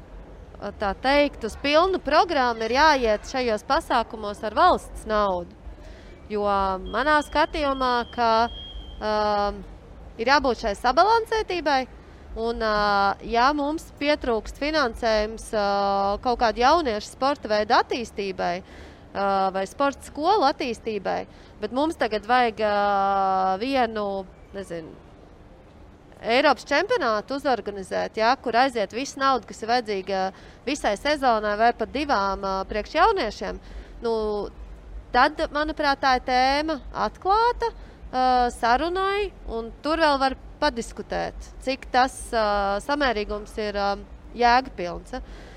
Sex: female